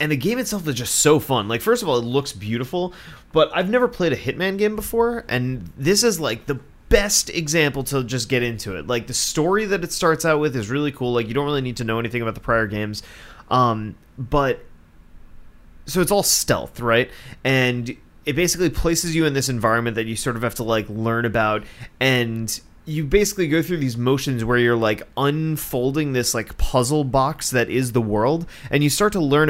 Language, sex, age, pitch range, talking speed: English, male, 30-49, 110-145 Hz, 215 wpm